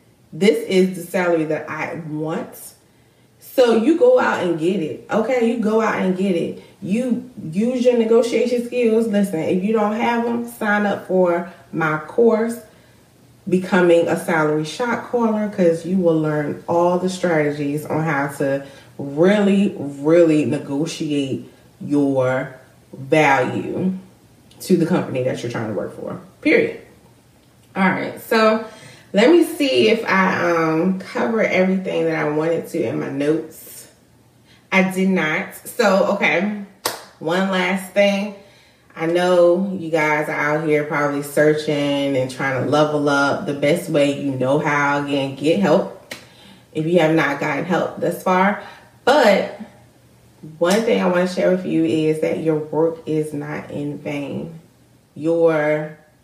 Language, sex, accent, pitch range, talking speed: English, female, American, 150-195 Hz, 150 wpm